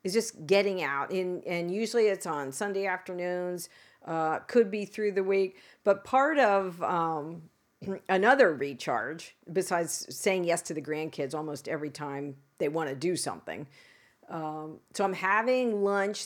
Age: 50-69